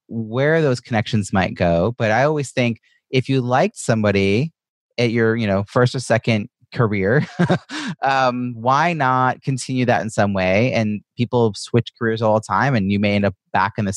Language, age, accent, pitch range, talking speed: English, 30-49, American, 100-125 Hz, 190 wpm